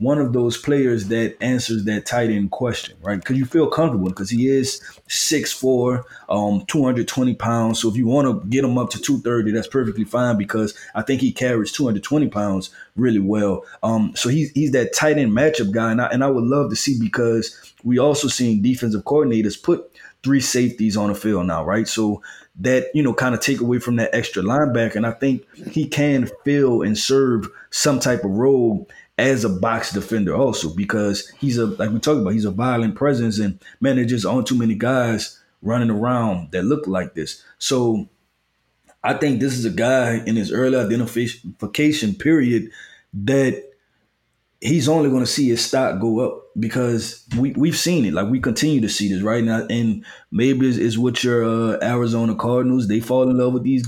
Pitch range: 110-130 Hz